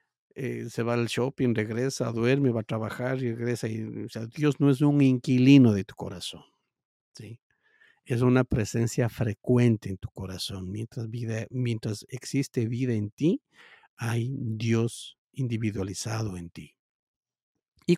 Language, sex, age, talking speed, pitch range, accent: Spanish, male, 50-69, 150 wpm, 110-130 Hz, Mexican